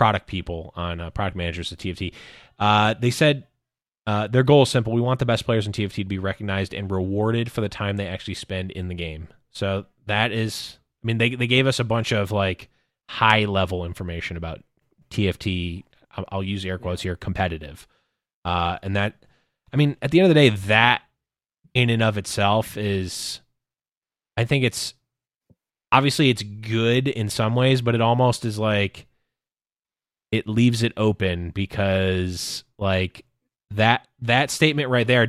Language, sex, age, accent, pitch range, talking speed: English, male, 20-39, American, 95-120 Hz, 175 wpm